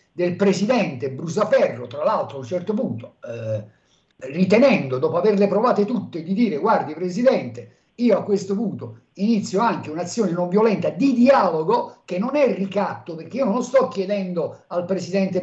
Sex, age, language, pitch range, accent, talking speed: male, 50-69, Italian, 165-220 Hz, native, 160 wpm